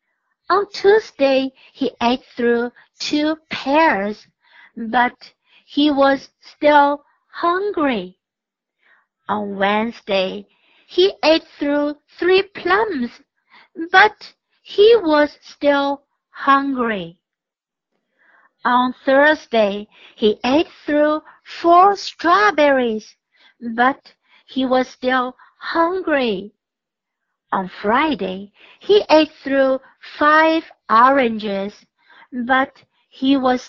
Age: 60-79